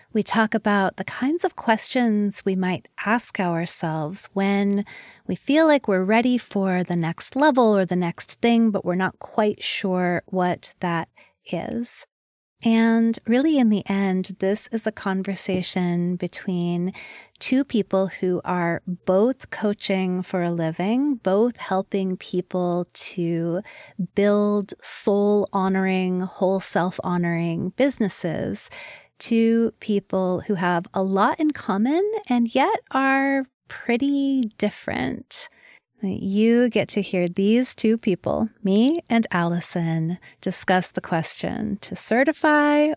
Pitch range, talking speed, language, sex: 180-230 Hz, 125 wpm, English, female